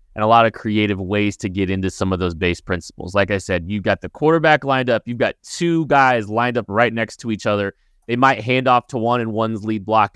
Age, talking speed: 20-39, 260 wpm